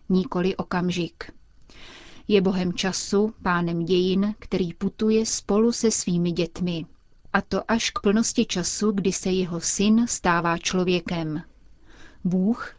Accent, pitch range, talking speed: native, 180-215 Hz, 120 wpm